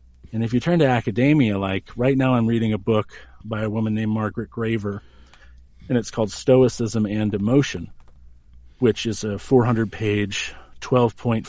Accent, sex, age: American, male, 40-59